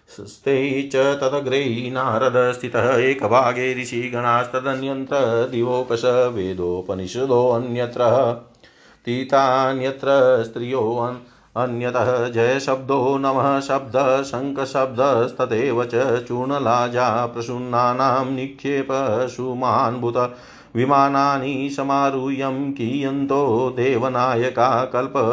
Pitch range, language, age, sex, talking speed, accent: 125-140 Hz, Hindi, 40-59, male, 45 wpm, native